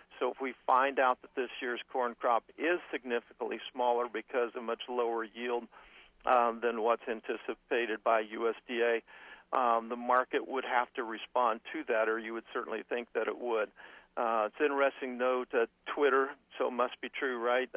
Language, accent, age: English, American, 50-69